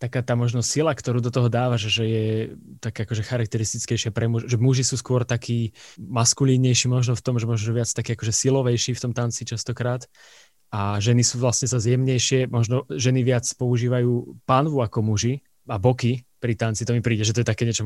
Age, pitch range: 20-39, 110-125 Hz